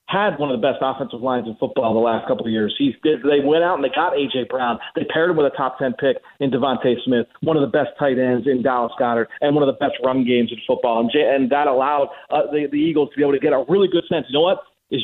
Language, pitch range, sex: English, 140-175 Hz, male